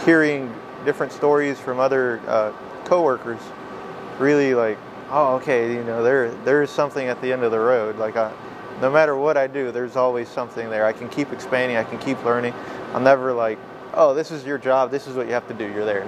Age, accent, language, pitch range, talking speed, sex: 20-39, American, English, 120-140 Hz, 215 wpm, male